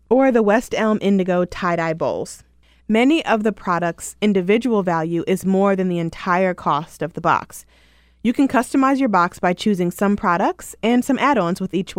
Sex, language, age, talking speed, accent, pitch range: female, English, 20-39, 180 wpm, American, 175-225 Hz